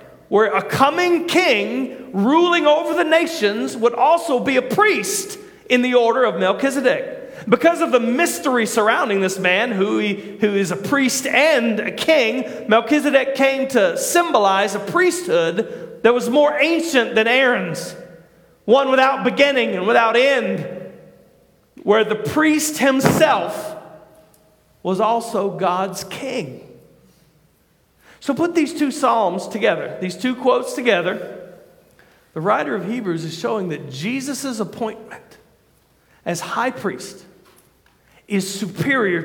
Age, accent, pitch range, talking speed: 40-59, American, 185-270 Hz, 130 wpm